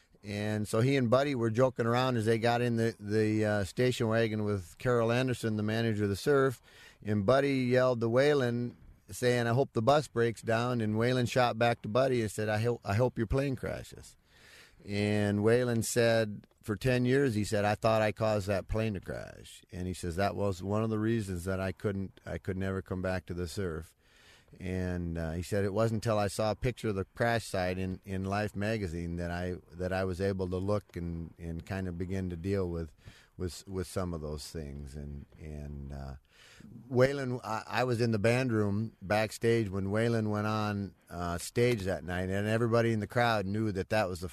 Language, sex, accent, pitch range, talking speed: English, male, American, 95-115 Hz, 215 wpm